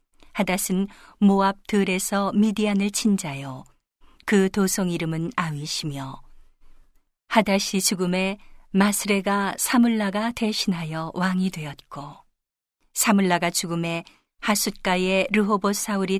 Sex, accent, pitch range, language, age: female, native, 170-200 Hz, Korean, 40-59